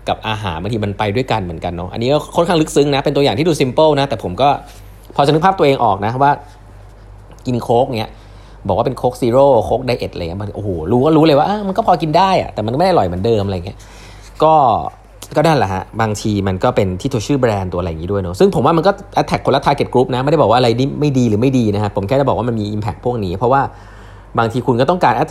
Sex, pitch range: male, 100-145 Hz